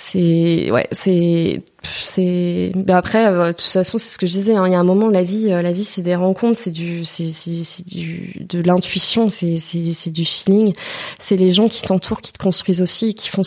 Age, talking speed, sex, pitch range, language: 20-39, 225 wpm, female, 170-195 Hz, French